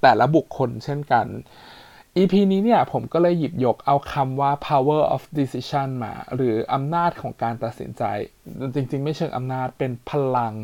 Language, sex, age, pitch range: Thai, male, 20-39, 115-150 Hz